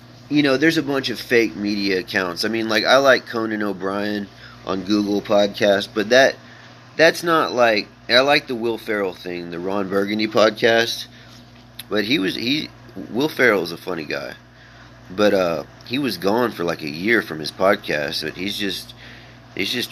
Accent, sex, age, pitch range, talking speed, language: American, male, 30-49, 95-120 Hz, 185 wpm, English